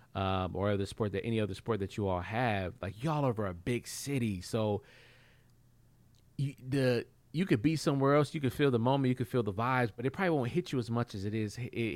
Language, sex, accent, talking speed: English, male, American, 240 wpm